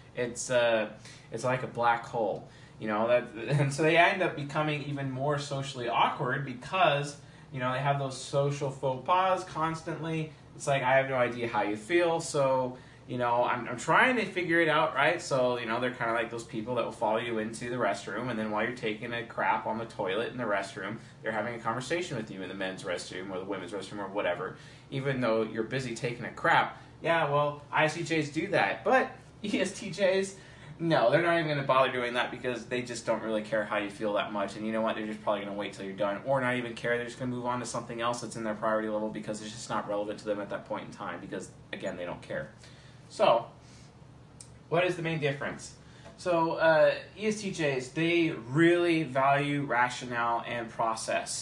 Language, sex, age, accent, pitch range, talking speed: English, male, 30-49, American, 115-150 Hz, 220 wpm